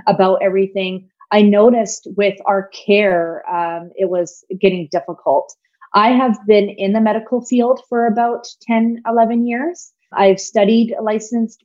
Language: English